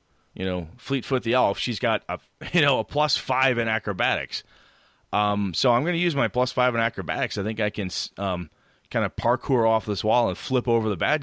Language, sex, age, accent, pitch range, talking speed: English, male, 30-49, American, 100-130 Hz, 225 wpm